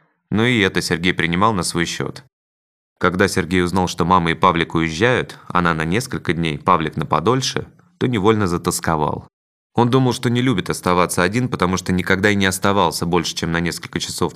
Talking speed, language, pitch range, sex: 185 wpm, Russian, 90-105 Hz, male